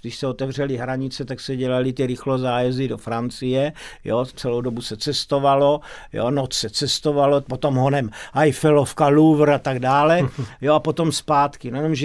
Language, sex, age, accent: Czech, male, 50-69, native